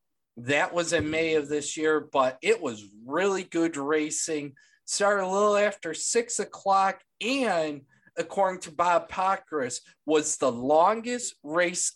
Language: English